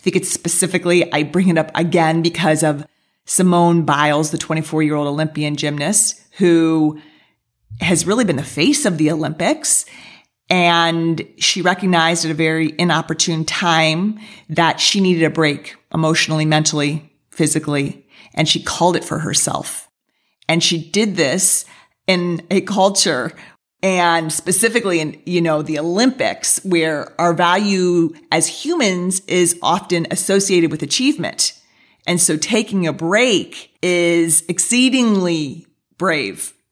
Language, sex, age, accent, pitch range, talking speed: English, female, 40-59, American, 155-190 Hz, 130 wpm